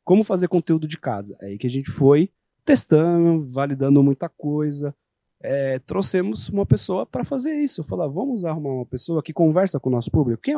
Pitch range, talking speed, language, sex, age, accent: 135-205 Hz, 205 wpm, Portuguese, male, 30-49, Brazilian